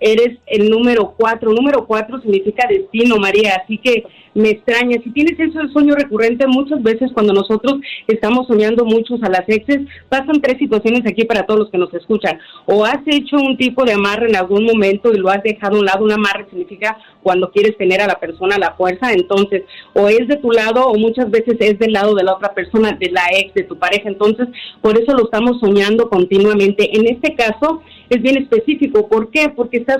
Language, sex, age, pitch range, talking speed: Spanish, female, 40-59, 200-240 Hz, 215 wpm